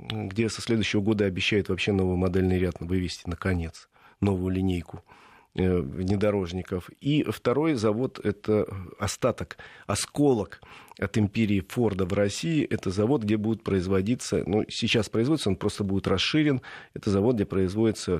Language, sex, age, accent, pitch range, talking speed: Russian, male, 40-59, native, 95-115 Hz, 135 wpm